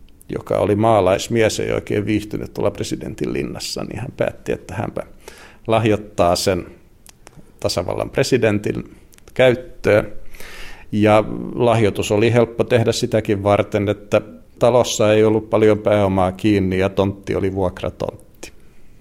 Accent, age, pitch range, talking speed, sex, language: native, 50-69, 100-110 Hz, 115 wpm, male, Finnish